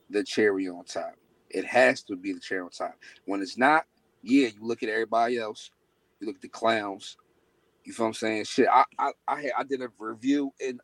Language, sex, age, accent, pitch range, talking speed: English, male, 40-59, American, 105-125 Hz, 220 wpm